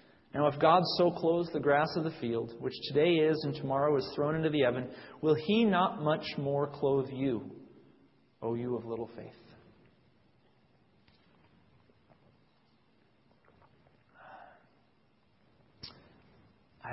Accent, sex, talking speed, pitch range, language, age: American, male, 115 wpm, 115-145 Hz, English, 40-59